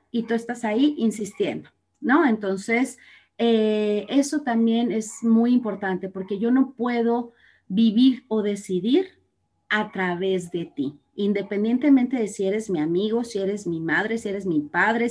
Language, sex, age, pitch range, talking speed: Spanish, female, 30-49, 195-250 Hz, 150 wpm